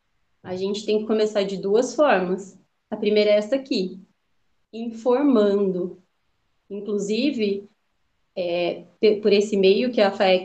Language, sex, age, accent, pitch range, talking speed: Portuguese, female, 30-49, Brazilian, 195-270 Hz, 130 wpm